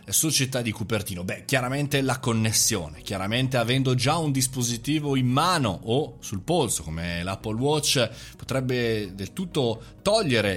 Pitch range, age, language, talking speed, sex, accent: 110-150 Hz, 30-49, Italian, 135 wpm, male, native